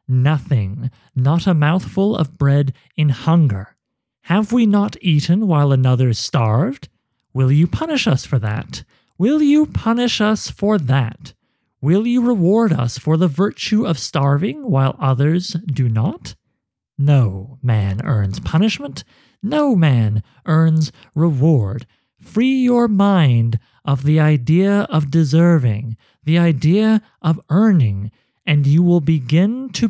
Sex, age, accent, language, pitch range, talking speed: male, 40-59, American, English, 125-185 Hz, 130 wpm